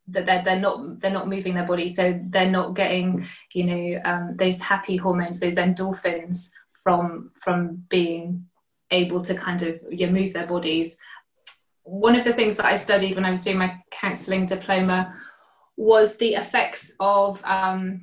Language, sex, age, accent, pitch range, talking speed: English, female, 20-39, British, 180-205 Hz, 170 wpm